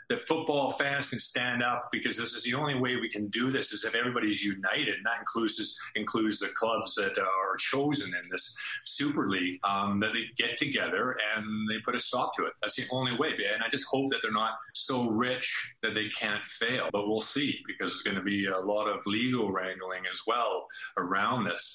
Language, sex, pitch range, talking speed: English, male, 105-130 Hz, 220 wpm